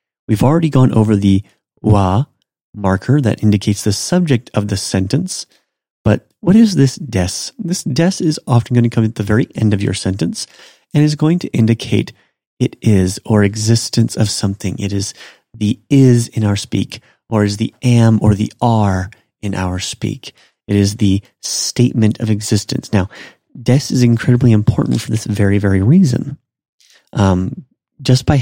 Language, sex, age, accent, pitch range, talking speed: English, male, 30-49, American, 100-120 Hz, 170 wpm